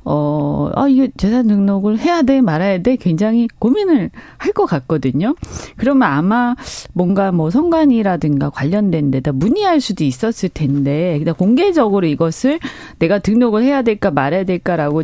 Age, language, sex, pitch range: 40-59, Korean, female, 165-260 Hz